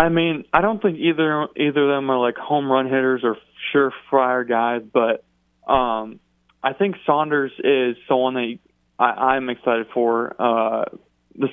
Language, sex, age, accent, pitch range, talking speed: English, male, 20-39, American, 115-140 Hz, 160 wpm